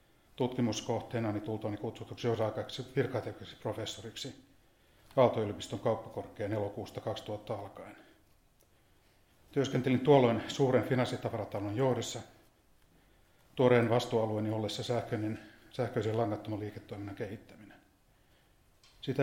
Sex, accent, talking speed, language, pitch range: male, native, 80 wpm, Finnish, 105-125 Hz